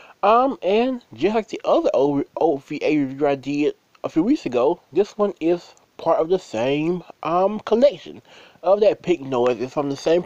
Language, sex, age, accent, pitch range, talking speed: English, male, 20-39, American, 140-215 Hz, 180 wpm